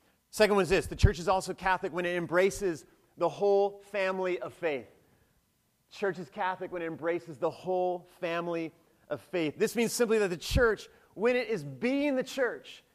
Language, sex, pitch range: English, male, 160-200 Hz